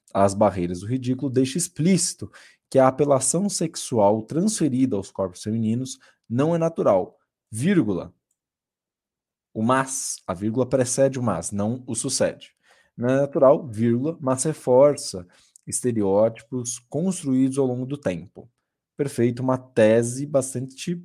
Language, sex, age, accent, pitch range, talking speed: Portuguese, male, 20-39, Brazilian, 120-160 Hz, 125 wpm